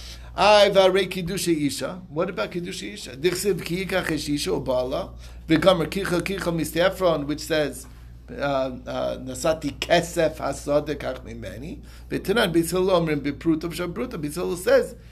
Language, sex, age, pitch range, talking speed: English, male, 60-79, 135-185 Hz, 105 wpm